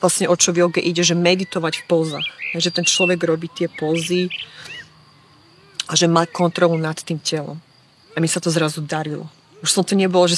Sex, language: female, Slovak